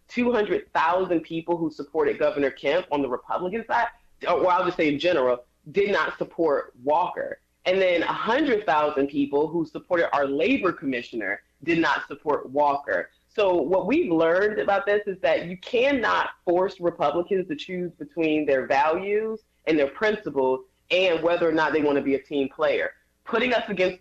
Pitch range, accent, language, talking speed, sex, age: 155-200 Hz, American, English, 165 wpm, female, 20-39